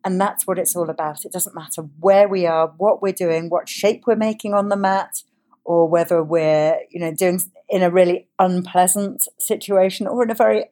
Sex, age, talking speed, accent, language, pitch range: female, 50-69, 205 wpm, British, English, 160-200 Hz